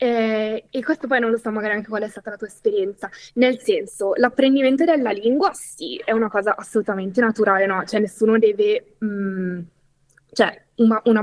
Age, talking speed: 20-39, 175 wpm